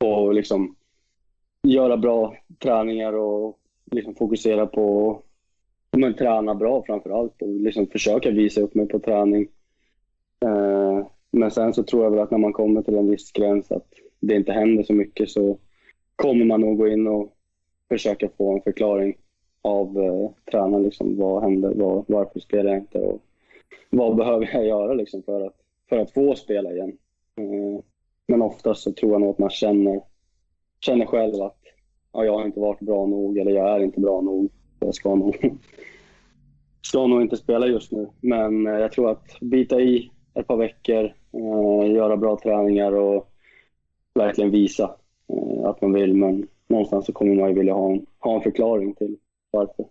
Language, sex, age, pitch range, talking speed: Swedish, male, 20-39, 100-110 Hz, 165 wpm